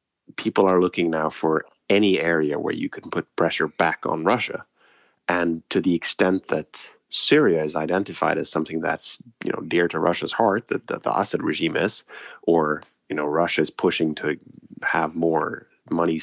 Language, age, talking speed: English, 30-49, 180 wpm